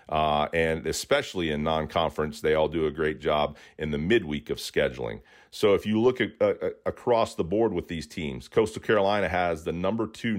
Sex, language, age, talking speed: male, English, 40-59, 190 wpm